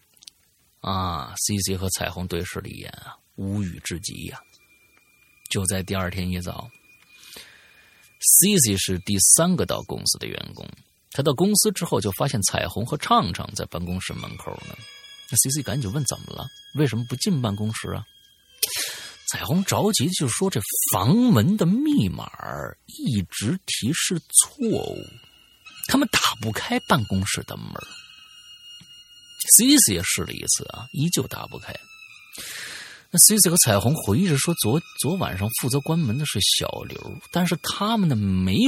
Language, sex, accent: Chinese, male, native